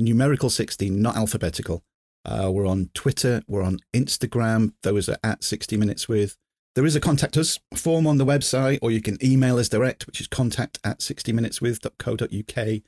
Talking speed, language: 165 wpm, English